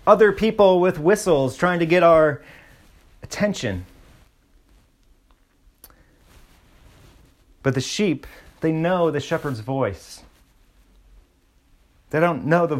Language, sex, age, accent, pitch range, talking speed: English, male, 30-49, American, 125-165 Hz, 100 wpm